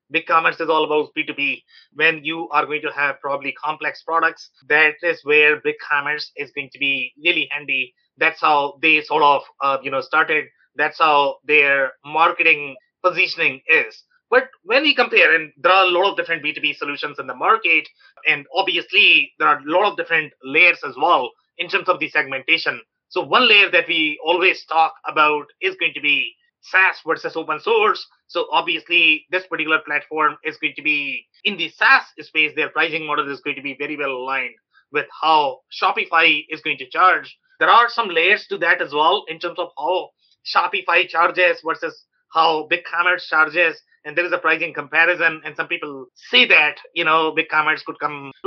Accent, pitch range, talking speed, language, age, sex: Indian, 150-180 Hz, 185 wpm, English, 30-49, male